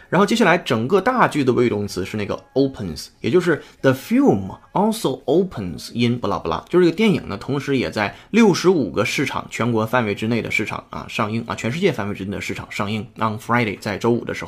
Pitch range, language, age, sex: 110-155 Hz, Chinese, 20-39, male